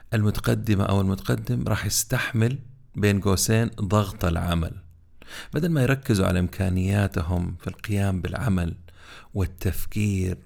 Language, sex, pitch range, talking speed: Arabic, male, 95-120 Hz, 105 wpm